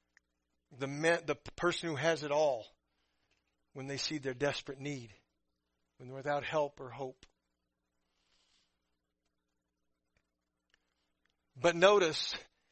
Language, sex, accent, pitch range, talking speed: English, male, American, 115-180 Hz, 105 wpm